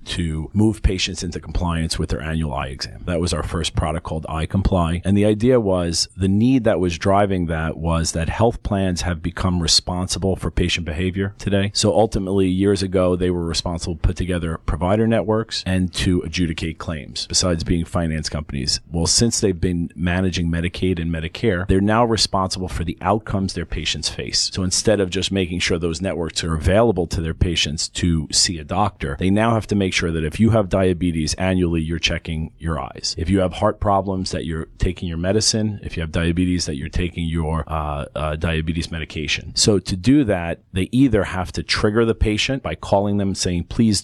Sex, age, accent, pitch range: male, 40-59, American, 80-100 Hz